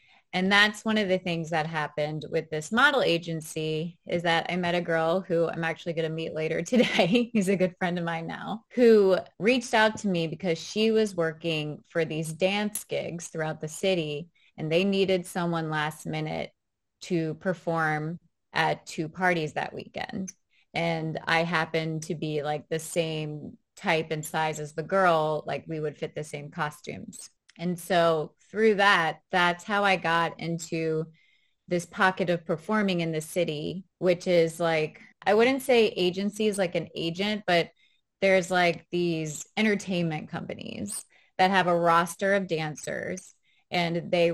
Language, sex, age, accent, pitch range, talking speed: English, female, 20-39, American, 160-190 Hz, 165 wpm